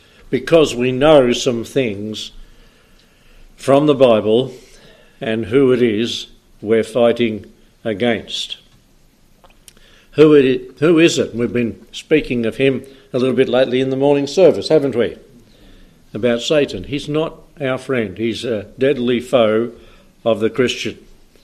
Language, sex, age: English, male, 60-79